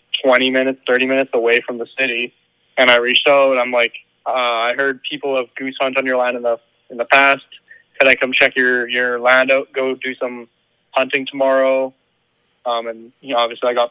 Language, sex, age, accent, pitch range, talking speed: English, male, 20-39, American, 120-135 Hz, 205 wpm